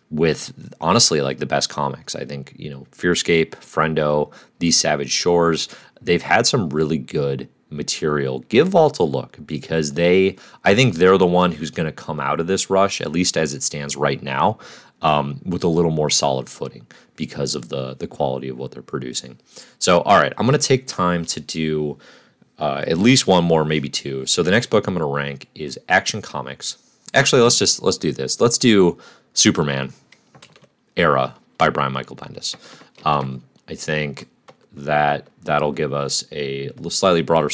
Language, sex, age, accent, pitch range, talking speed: English, male, 30-49, American, 70-90 Hz, 185 wpm